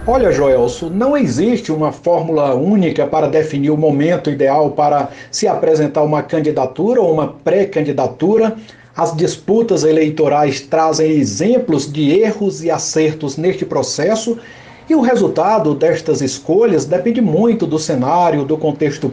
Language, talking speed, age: Portuguese, 130 wpm, 60-79